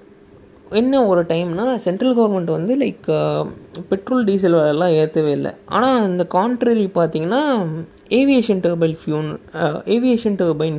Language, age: Tamil, 20-39